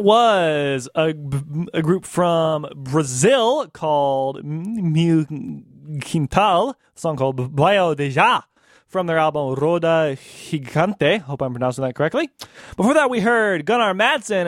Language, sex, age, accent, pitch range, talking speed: English, male, 20-39, American, 135-180 Hz, 125 wpm